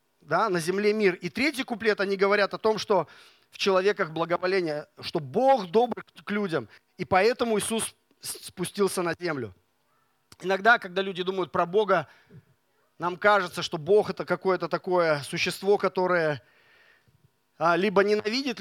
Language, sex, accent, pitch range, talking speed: Russian, male, native, 170-205 Hz, 135 wpm